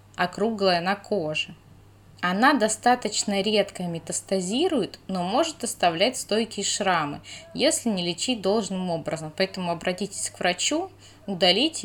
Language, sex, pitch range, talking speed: Russian, female, 170-225 Hz, 110 wpm